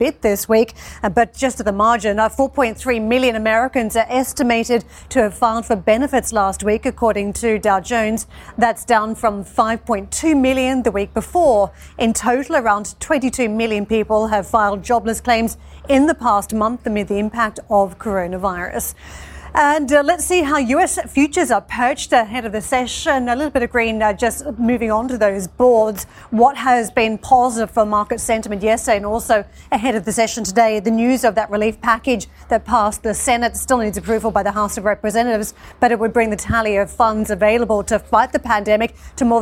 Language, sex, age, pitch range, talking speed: English, female, 40-59, 215-245 Hz, 190 wpm